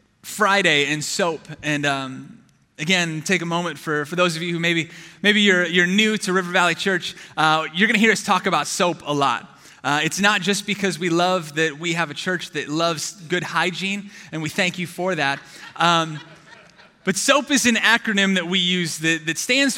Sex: male